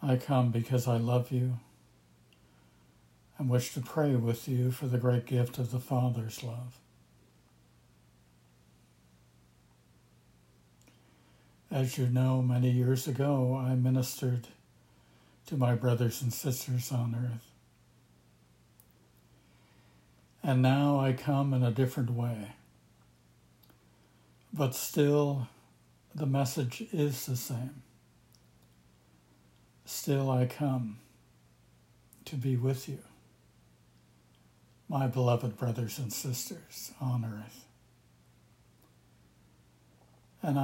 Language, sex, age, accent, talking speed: English, male, 60-79, American, 95 wpm